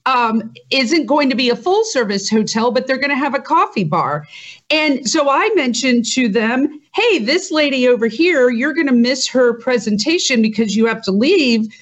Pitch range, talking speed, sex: 230-310 Hz, 195 wpm, female